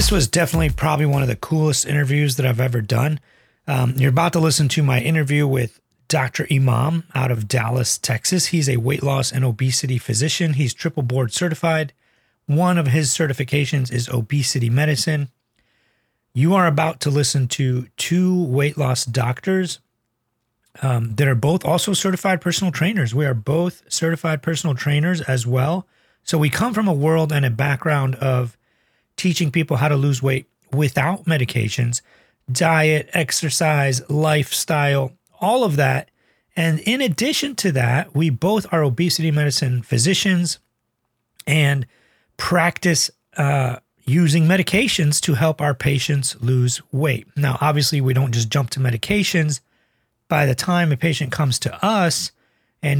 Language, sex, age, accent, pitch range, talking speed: English, male, 30-49, American, 130-165 Hz, 155 wpm